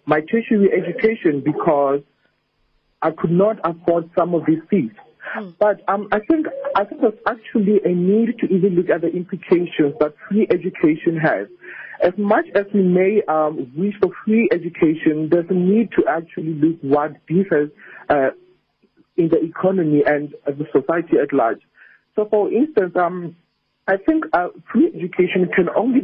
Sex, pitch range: male, 160-210 Hz